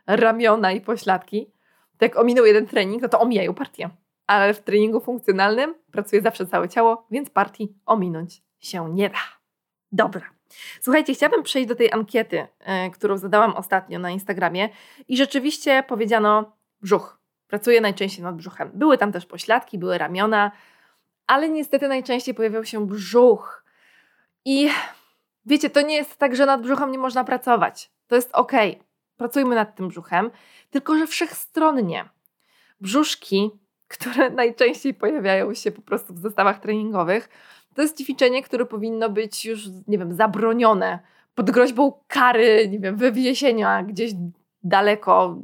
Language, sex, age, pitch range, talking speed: Polish, female, 20-39, 200-255 Hz, 140 wpm